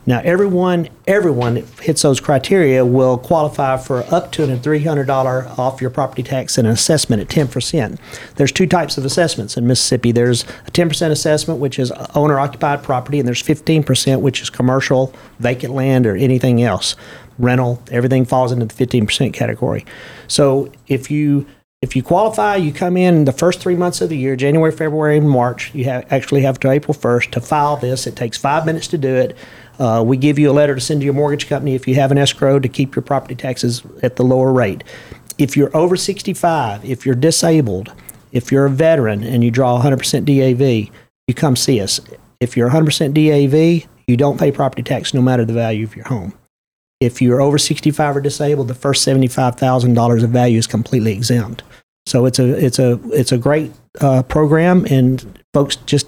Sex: male